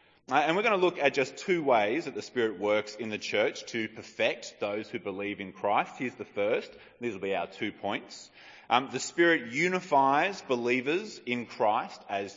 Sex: male